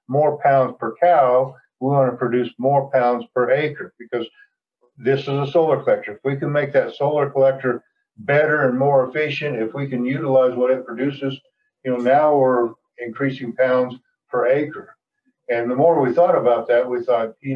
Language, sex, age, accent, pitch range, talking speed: English, male, 50-69, American, 125-150 Hz, 185 wpm